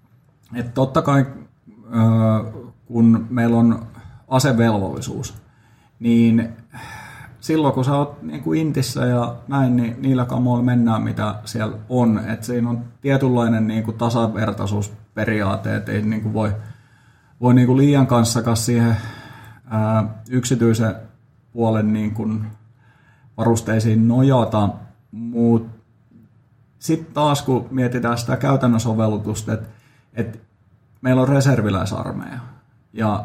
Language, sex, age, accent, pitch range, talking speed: Finnish, male, 30-49, native, 110-130 Hz, 110 wpm